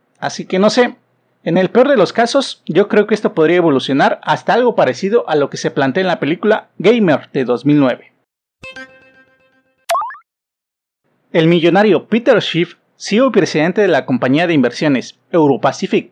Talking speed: 160 wpm